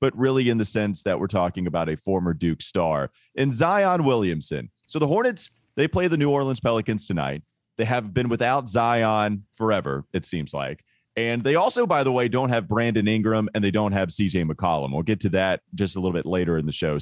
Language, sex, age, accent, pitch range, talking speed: English, male, 30-49, American, 95-135 Hz, 220 wpm